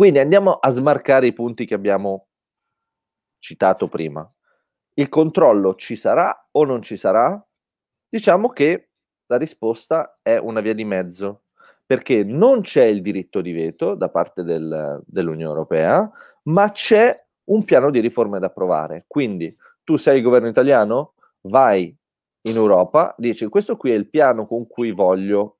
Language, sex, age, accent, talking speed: Italian, male, 30-49, native, 150 wpm